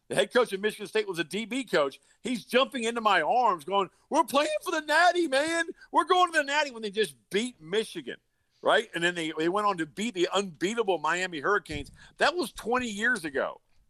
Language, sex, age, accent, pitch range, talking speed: English, male, 50-69, American, 155-230 Hz, 215 wpm